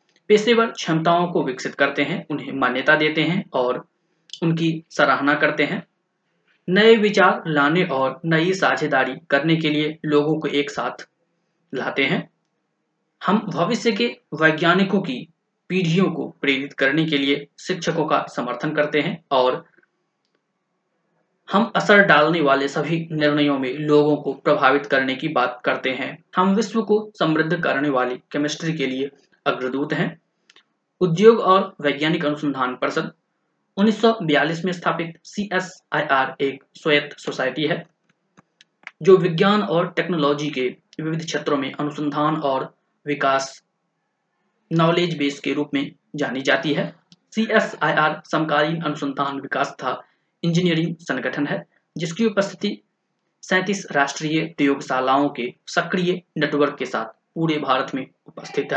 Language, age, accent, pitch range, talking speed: Hindi, 20-39, native, 140-180 Hz, 110 wpm